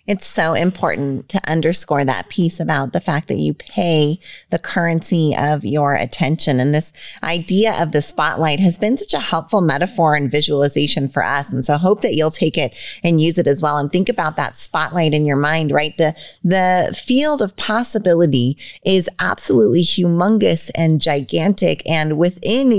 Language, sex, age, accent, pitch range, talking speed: English, female, 30-49, American, 155-200 Hz, 180 wpm